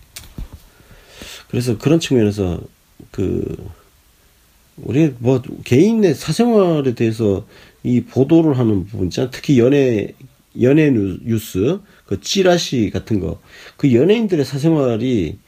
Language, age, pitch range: Korean, 40-59, 95-130 Hz